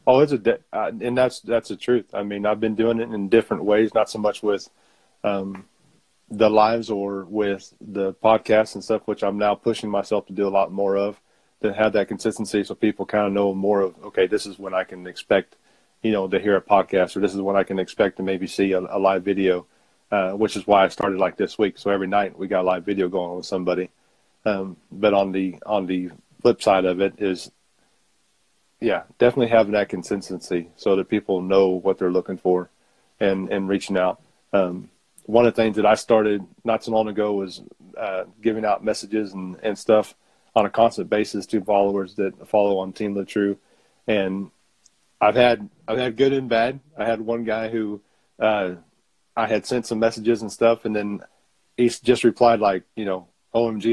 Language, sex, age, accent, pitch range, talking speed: English, male, 40-59, American, 95-110 Hz, 210 wpm